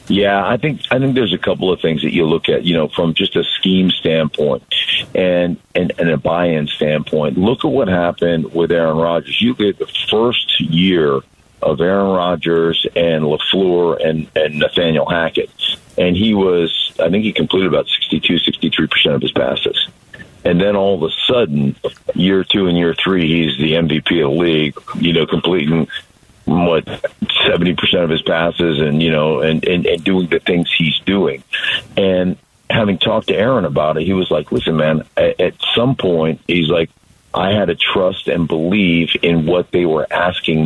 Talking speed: 185 wpm